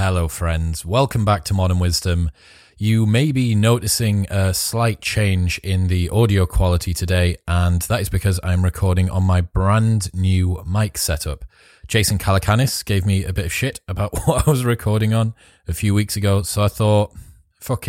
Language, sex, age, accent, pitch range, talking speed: English, male, 20-39, British, 90-110 Hz, 180 wpm